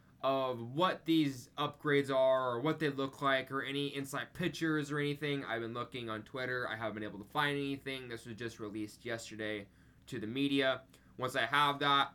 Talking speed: 200 wpm